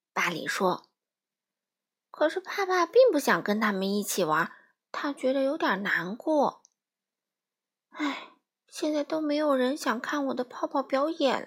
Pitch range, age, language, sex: 225-335 Hz, 20-39, Chinese, female